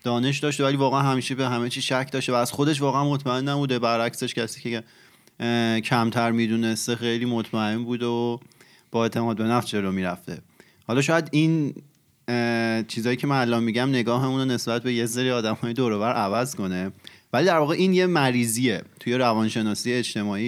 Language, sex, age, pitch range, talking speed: Persian, male, 30-49, 110-135 Hz, 180 wpm